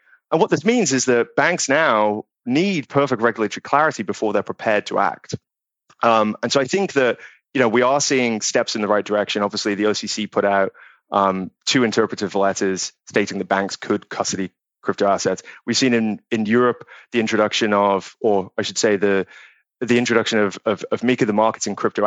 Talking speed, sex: 195 wpm, male